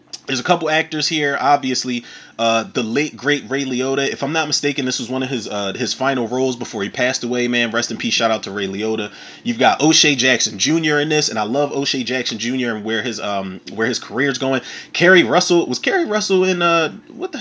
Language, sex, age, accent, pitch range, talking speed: English, male, 30-49, American, 115-155 Hz, 235 wpm